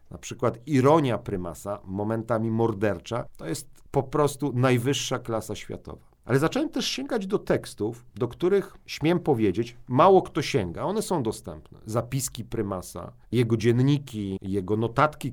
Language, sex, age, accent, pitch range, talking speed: Polish, male, 40-59, native, 110-140 Hz, 135 wpm